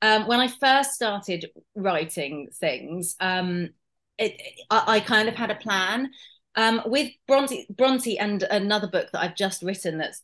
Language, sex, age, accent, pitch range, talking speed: English, female, 30-49, British, 195-270 Hz, 170 wpm